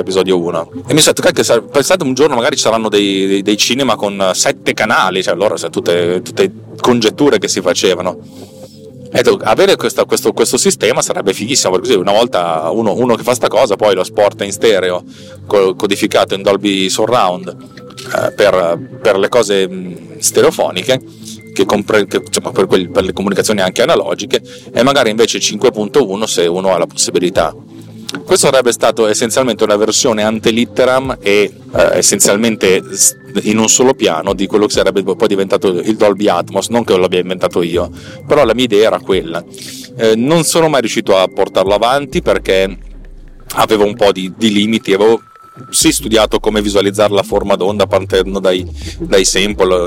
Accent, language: native, Italian